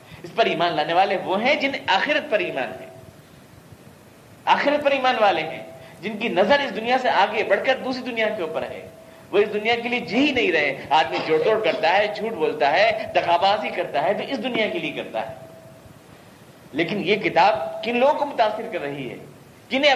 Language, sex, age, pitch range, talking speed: Urdu, male, 50-69, 165-230 Hz, 200 wpm